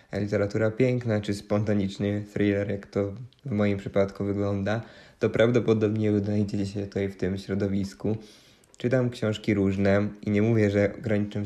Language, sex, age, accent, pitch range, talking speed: Polish, male, 20-39, native, 100-115 Hz, 140 wpm